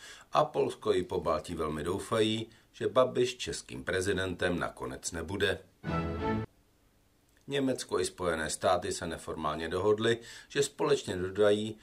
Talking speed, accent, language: 110 wpm, native, Czech